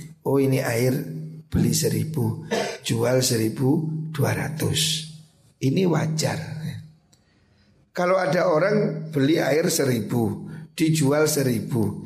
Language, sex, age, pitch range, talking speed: Indonesian, male, 50-69, 135-160 Hz, 95 wpm